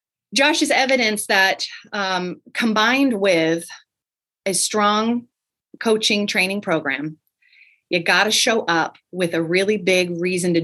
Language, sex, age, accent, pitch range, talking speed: English, female, 30-49, American, 170-215 Hz, 125 wpm